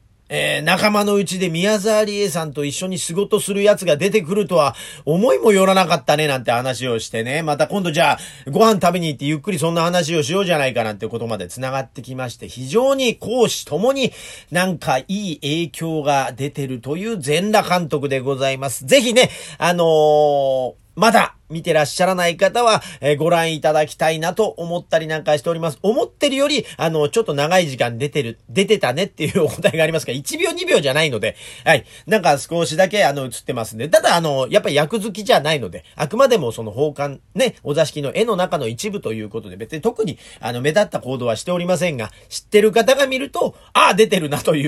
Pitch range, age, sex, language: 140-205 Hz, 40-59, male, Japanese